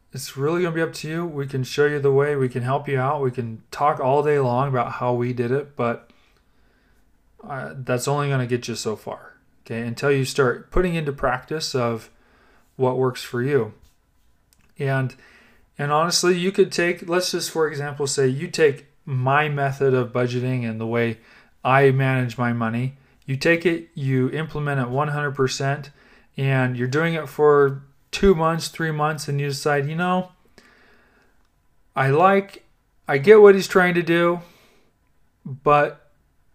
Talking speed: 175 wpm